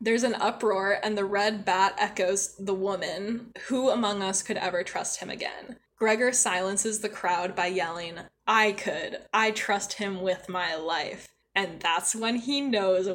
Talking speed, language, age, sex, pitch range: 170 wpm, English, 10-29, female, 185-220 Hz